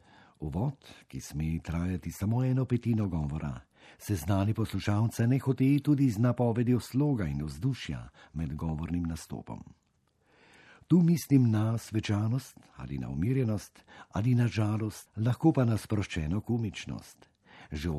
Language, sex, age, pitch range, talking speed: Italian, male, 50-69, 85-120 Hz, 130 wpm